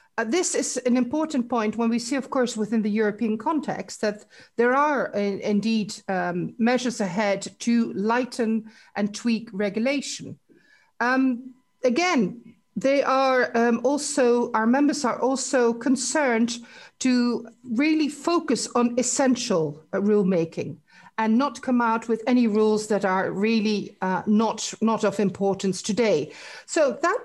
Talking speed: 140 wpm